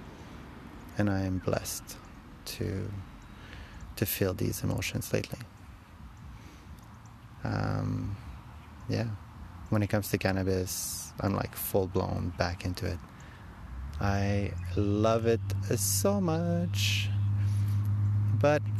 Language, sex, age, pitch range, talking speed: English, male, 30-49, 95-105 Hz, 95 wpm